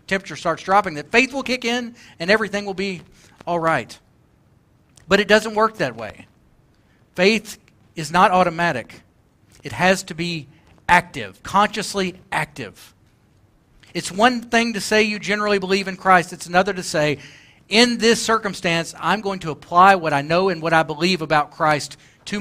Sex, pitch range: male, 135-195 Hz